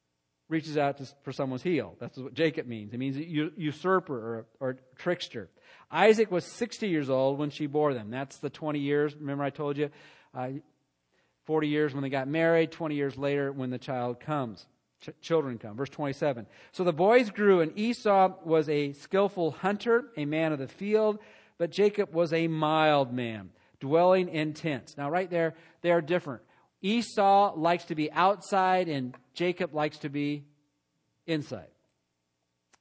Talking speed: 165 wpm